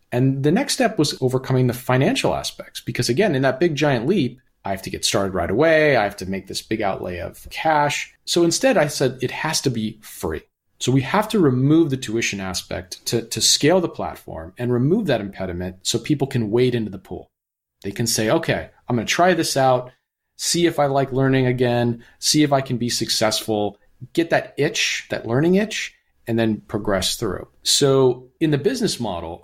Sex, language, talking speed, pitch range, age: male, English, 210 wpm, 110-145 Hz, 40-59